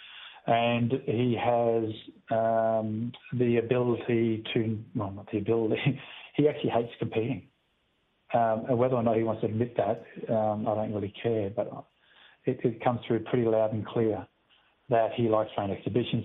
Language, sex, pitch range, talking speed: English, male, 105-120 Hz, 165 wpm